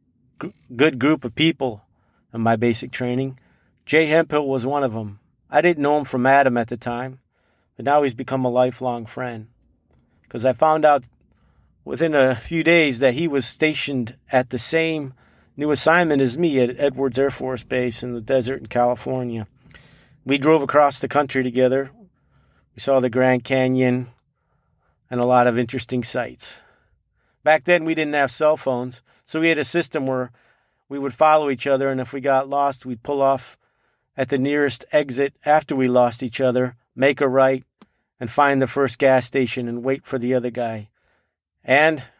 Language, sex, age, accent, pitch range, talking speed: English, male, 40-59, American, 125-145 Hz, 180 wpm